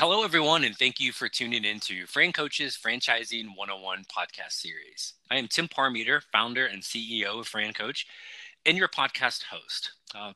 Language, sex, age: English, male, 20-39